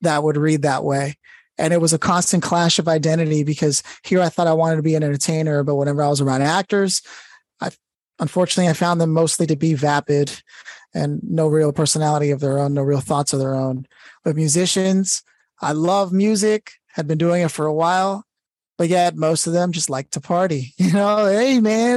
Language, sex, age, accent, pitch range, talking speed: English, male, 20-39, American, 145-180 Hz, 205 wpm